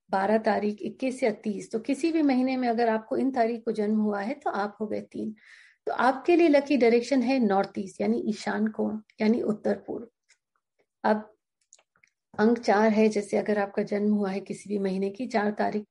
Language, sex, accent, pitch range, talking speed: Hindi, female, native, 210-250 Hz, 200 wpm